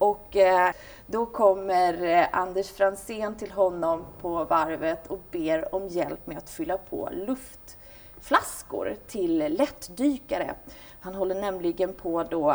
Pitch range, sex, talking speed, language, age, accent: 180-270 Hz, female, 120 wpm, Swedish, 30-49, native